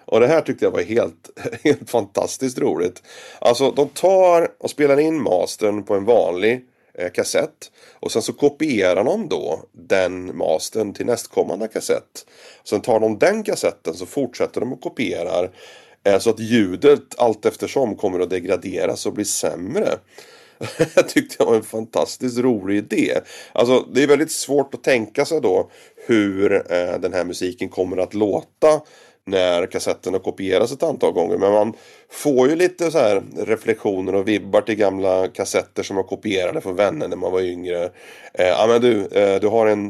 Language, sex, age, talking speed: Swedish, male, 30-49, 175 wpm